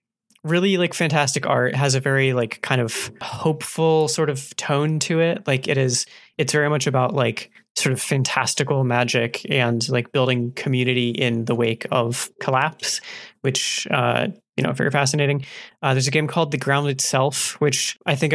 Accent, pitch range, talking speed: American, 125-155 Hz, 175 wpm